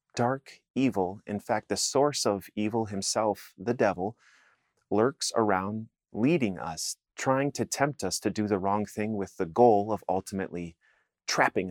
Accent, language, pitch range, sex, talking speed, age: American, English, 100-125 Hz, male, 155 wpm, 30-49